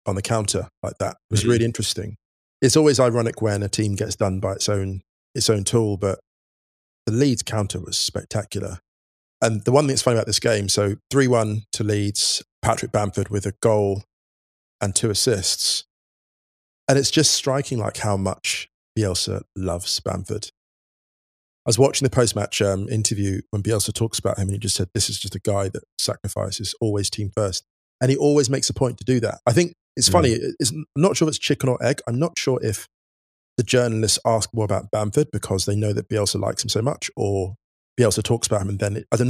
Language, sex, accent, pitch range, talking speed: English, male, British, 95-120 Hz, 210 wpm